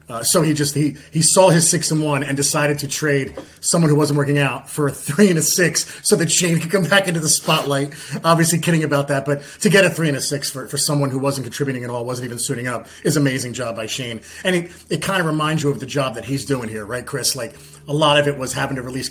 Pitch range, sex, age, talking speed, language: 135-160 Hz, male, 30-49, 280 wpm, English